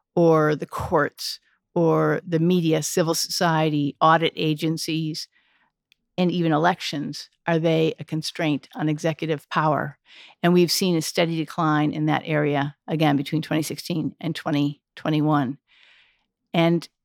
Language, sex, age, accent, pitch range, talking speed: English, female, 50-69, American, 155-185 Hz, 125 wpm